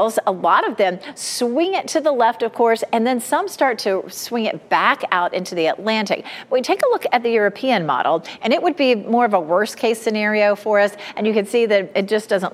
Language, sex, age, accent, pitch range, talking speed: English, female, 40-59, American, 195-275 Hz, 240 wpm